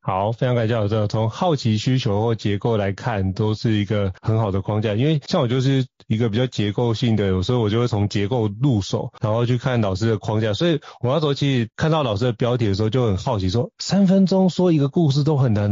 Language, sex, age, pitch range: Chinese, male, 30-49, 110-135 Hz